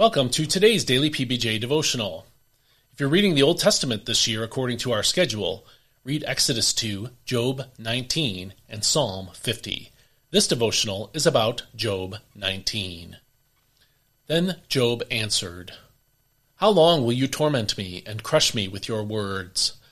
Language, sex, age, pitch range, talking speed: English, male, 30-49, 110-145 Hz, 140 wpm